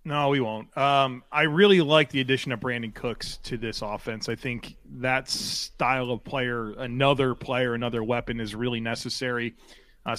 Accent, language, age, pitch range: American, English, 30-49, 115-130 Hz